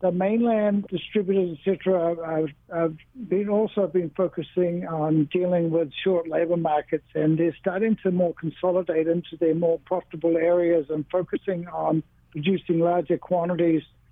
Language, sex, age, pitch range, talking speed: English, male, 60-79, 160-185 Hz, 145 wpm